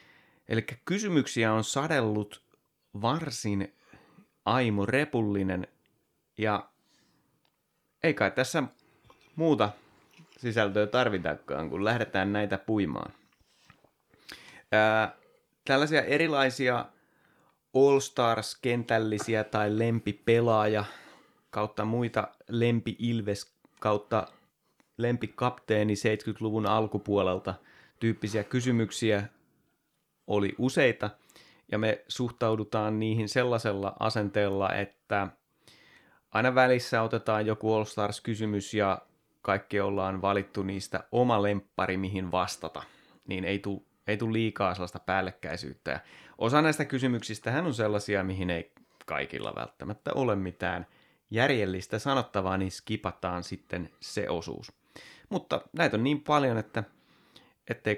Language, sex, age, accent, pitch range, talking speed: Finnish, male, 30-49, native, 100-120 Hz, 95 wpm